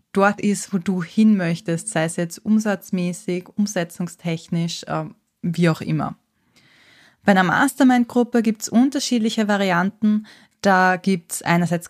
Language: German